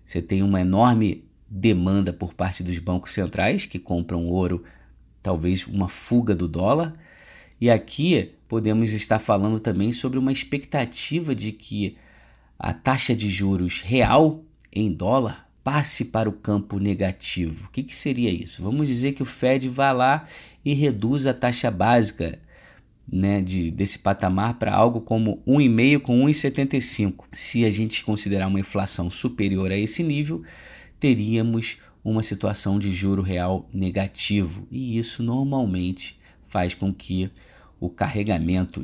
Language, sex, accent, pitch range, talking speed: Portuguese, male, Brazilian, 95-125 Hz, 140 wpm